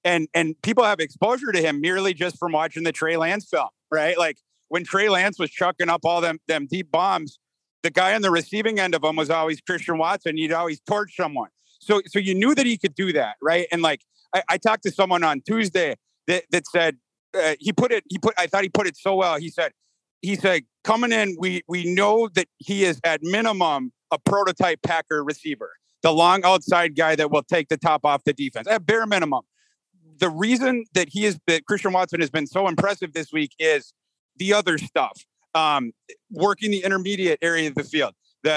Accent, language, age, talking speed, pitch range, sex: American, English, 40-59, 215 wpm, 160-195 Hz, male